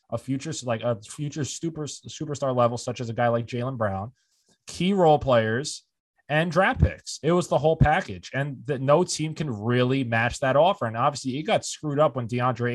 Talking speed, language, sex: 200 wpm, English, male